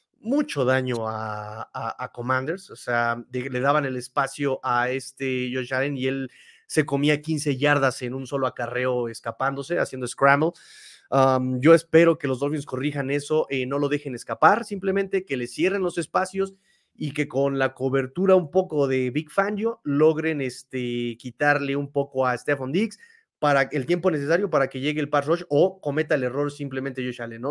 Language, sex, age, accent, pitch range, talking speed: Spanish, male, 30-49, Mexican, 130-160 Hz, 185 wpm